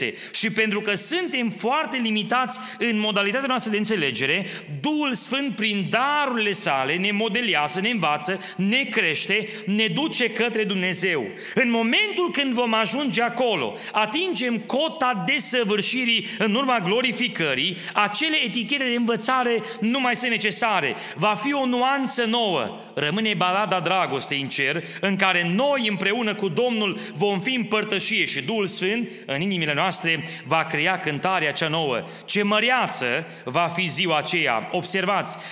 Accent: native